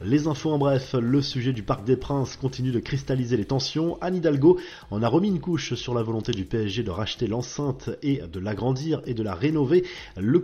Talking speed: 220 wpm